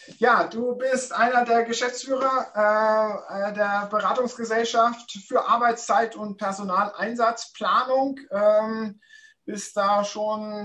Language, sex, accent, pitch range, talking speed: German, male, German, 190-225 Hz, 95 wpm